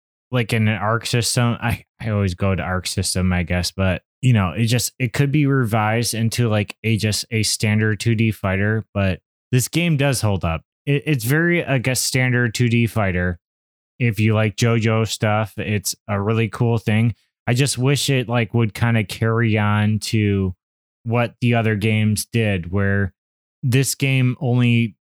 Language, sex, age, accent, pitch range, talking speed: English, male, 20-39, American, 100-115 Hz, 175 wpm